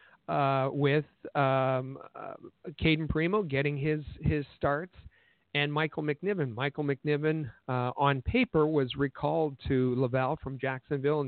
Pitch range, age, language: 135-155 Hz, 50-69, English